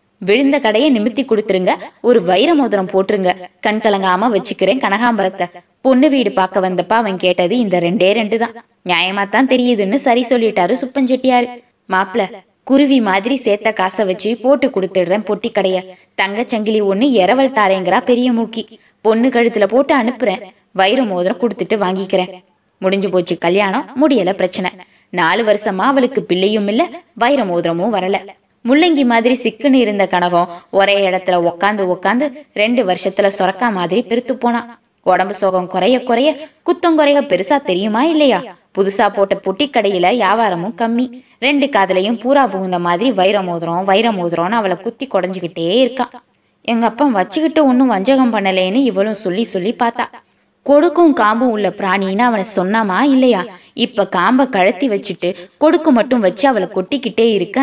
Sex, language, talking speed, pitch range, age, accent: female, Tamil, 135 wpm, 190-255 Hz, 20-39, native